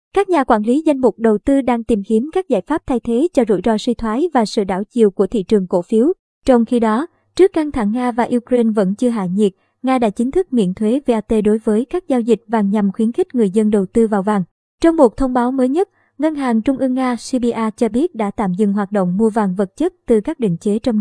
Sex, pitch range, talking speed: male, 220-265 Hz, 265 wpm